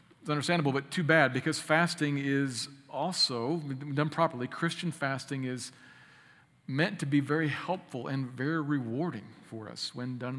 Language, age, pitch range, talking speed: English, 40-59, 125-150 Hz, 150 wpm